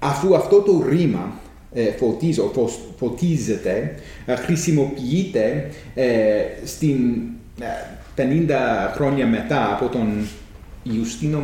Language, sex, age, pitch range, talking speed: English, male, 30-49, 125-170 Hz, 85 wpm